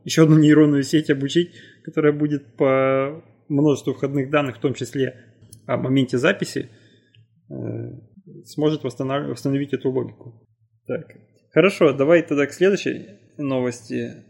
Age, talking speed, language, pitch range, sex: 20-39, 120 wpm, Russian, 120-150 Hz, male